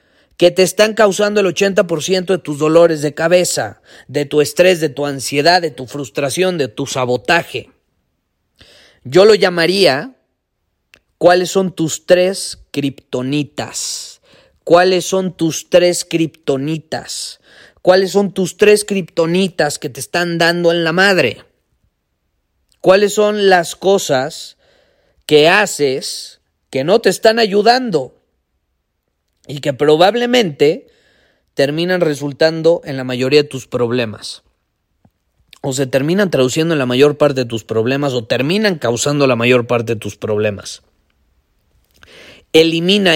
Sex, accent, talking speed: male, Mexican, 125 wpm